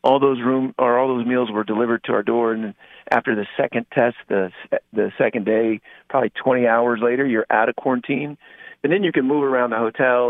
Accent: American